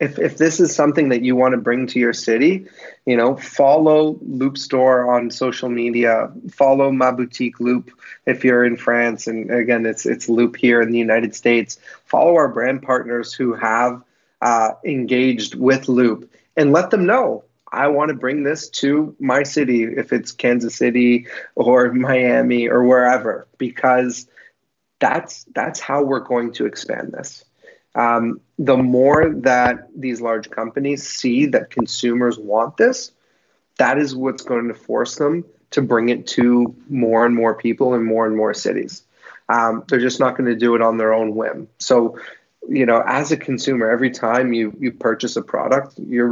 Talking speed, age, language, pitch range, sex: 175 wpm, 30-49, English, 115-135 Hz, male